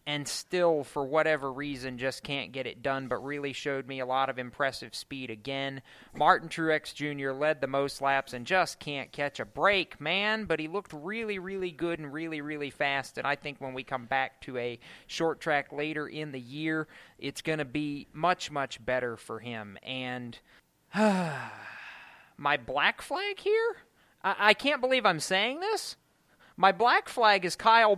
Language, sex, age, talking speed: English, male, 30-49, 185 wpm